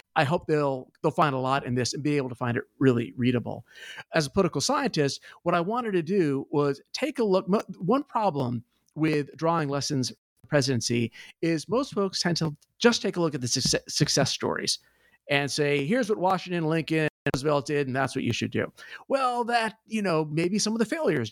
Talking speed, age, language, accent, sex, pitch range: 210 wpm, 50-69, English, American, male, 135-195 Hz